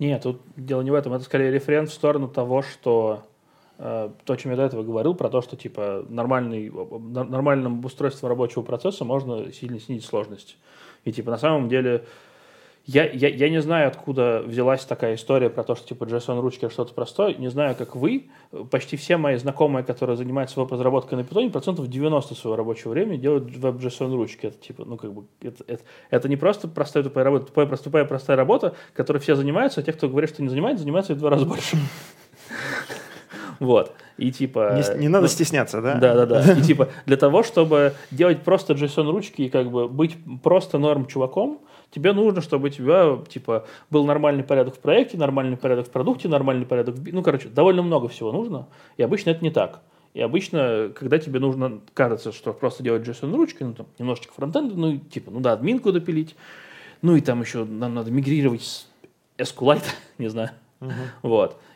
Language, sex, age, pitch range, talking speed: Russian, male, 20-39, 125-155 Hz, 190 wpm